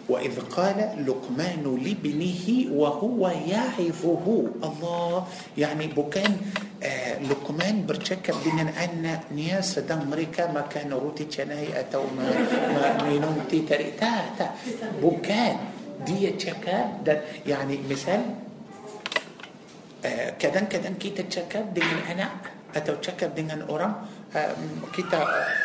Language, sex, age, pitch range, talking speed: Malay, male, 50-69, 155-205 Hz, 95 wpm